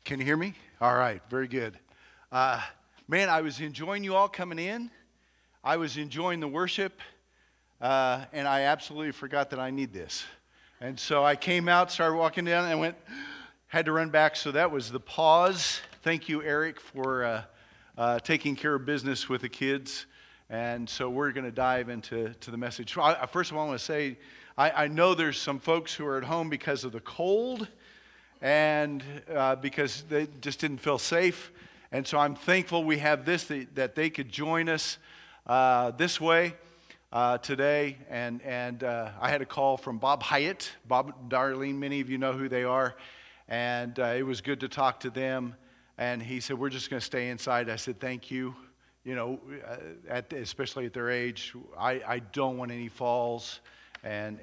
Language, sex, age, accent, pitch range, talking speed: English, male, 50-69, American, 125-155 Hz, 195 wpm